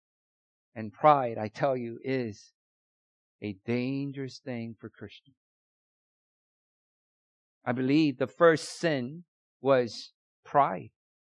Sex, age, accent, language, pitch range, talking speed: male, 50-69, American, English, 135-185 Hz, 95 wpm